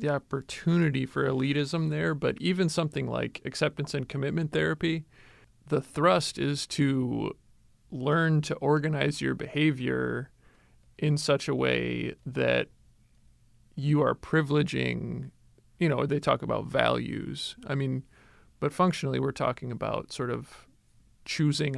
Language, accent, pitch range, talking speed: English, American, 120-150 Hz, 125 wpm